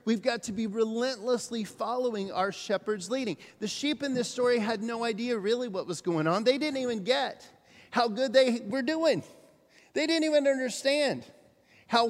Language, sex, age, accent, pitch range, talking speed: English, male, 40-59, American, 180-245 Hz, 180 wpm